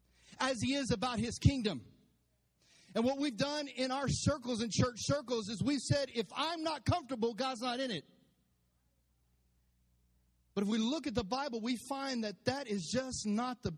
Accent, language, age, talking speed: American, English, 40-59, 185 wpm